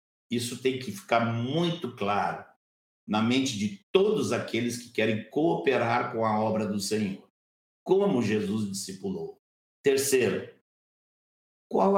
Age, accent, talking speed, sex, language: 60-79, Brazilian, 120 wpm, male, Portuguese